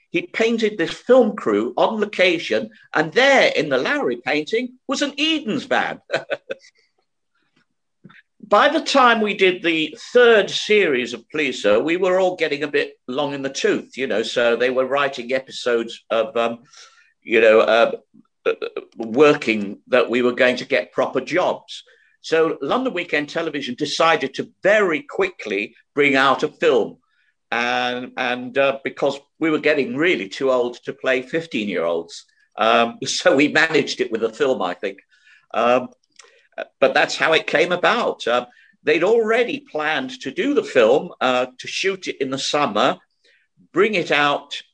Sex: male